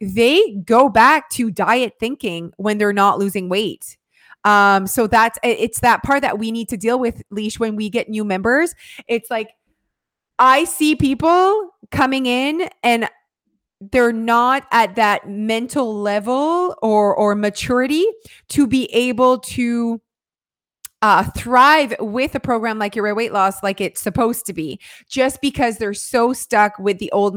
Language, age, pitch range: English, 20-39, 215-270 Hz